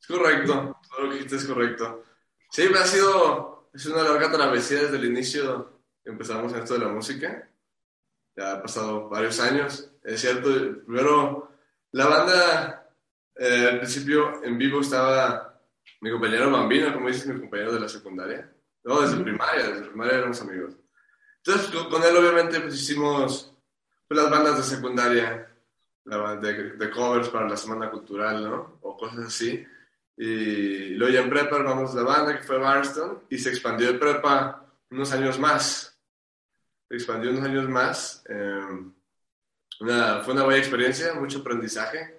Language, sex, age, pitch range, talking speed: English, male, 20-39, 110-145 Hz, 160 wpm